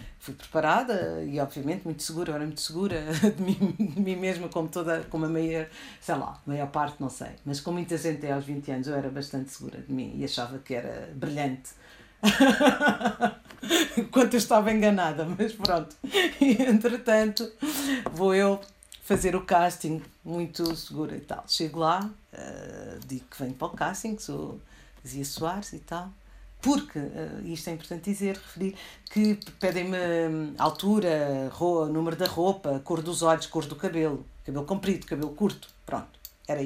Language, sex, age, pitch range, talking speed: Portuguese, female, 50-69, 155-205 Hz, 165 wpm